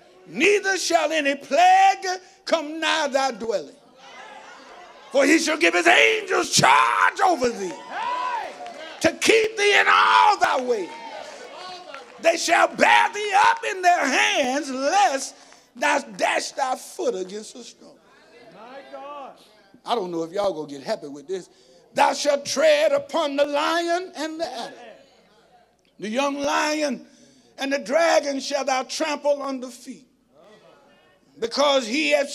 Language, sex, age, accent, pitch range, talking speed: English, male, 50-69, American, 235-310 Hz, 140 wpm